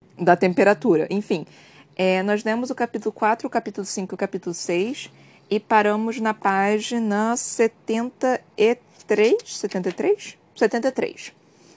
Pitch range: 175-225 Hz